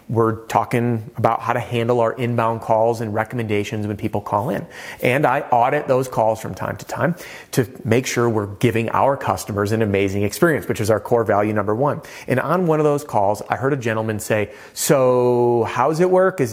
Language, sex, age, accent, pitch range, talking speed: English, male, 30-49, American, 110-135 Hz, 205 wpm